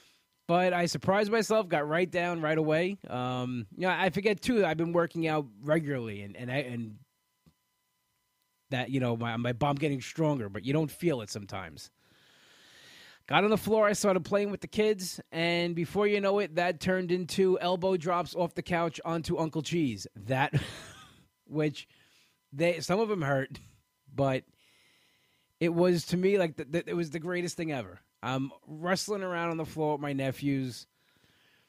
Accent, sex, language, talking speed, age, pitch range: American, male, English, 180 wpm, 20-39, 135-180 Hz